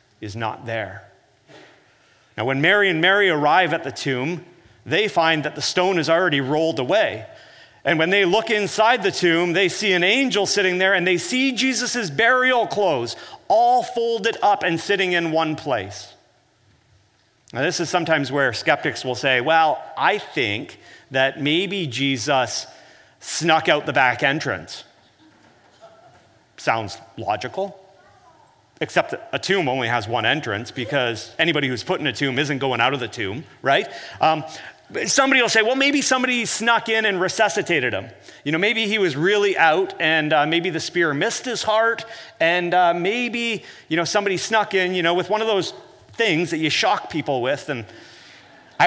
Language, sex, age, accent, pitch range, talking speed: English, male, 40-59, American, 140-215 Hz, 170 wpm